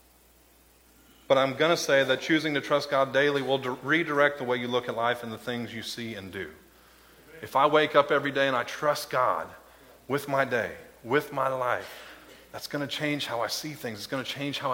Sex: male